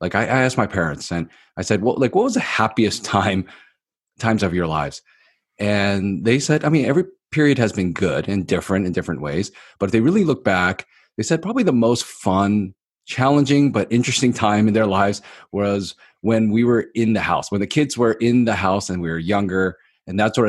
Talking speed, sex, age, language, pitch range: 215 wpm, male, 30-49, English, 95-120 Hz